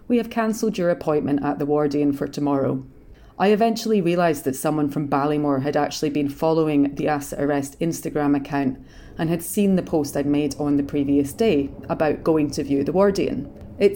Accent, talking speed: British, 190 wpm